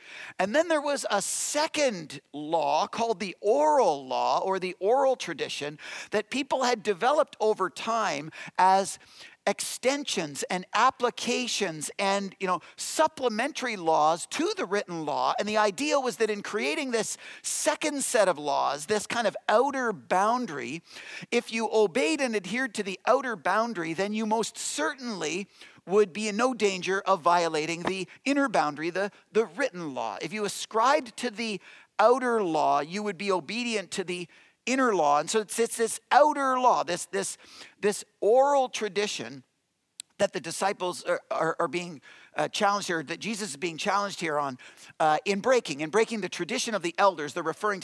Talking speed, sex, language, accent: 170 wpm, male, English, American